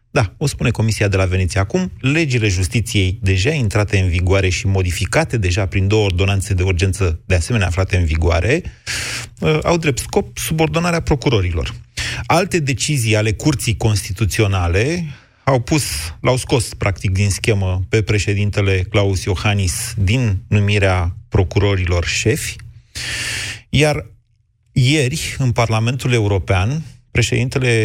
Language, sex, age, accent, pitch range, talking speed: Romanian, male, 30-49, native, 100-120 Hz, 125 wpm